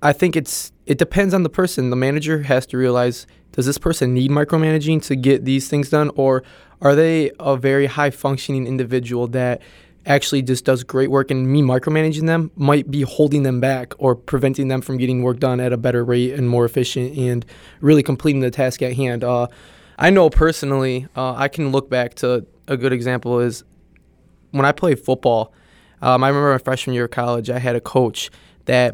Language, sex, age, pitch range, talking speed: English, male, 20-39, 125-145 Hz, 205 wpm